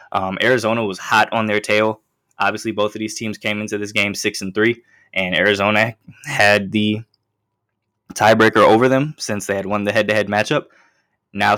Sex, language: male, English